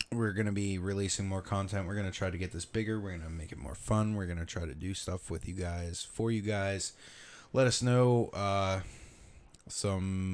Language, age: English, 20-39